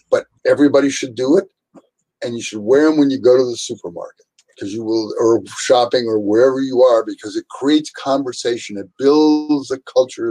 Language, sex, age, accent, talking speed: English, male, 50-69, American, 190 wpm